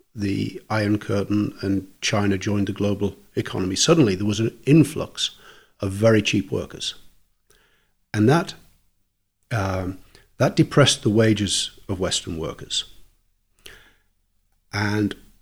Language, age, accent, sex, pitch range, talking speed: English, 50-69, British, male, 95-115 Hz, 115 wpm